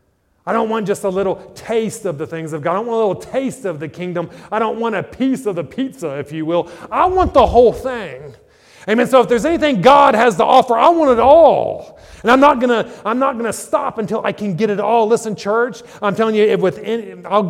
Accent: American